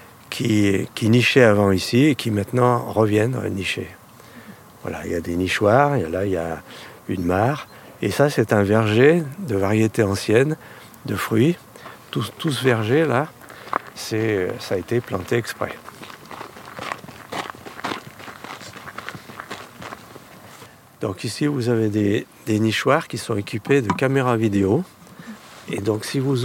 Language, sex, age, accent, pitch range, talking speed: French, male, 50-69, French, 100-125 Hz, 140 wpm